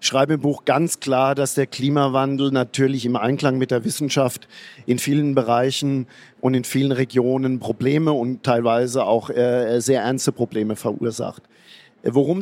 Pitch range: 130-150 Hz